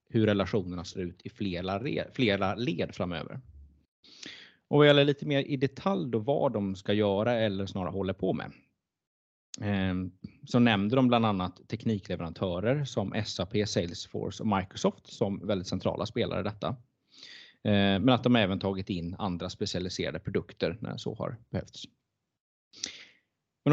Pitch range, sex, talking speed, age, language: 100-130 Hz, male, 150 wpm, 30-49, Swedish